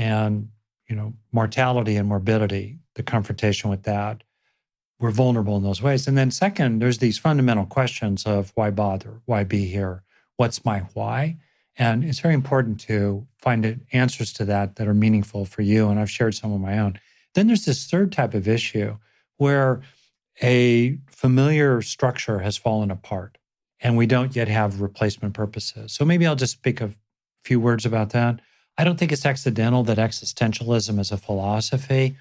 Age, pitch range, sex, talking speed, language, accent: 40-59, 105-130 Hz, male, 175 wpm, English, American